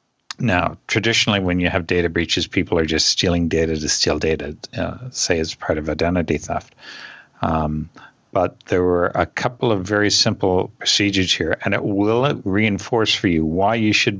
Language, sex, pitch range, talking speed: English, male, 85-105 Hz, 180 wpm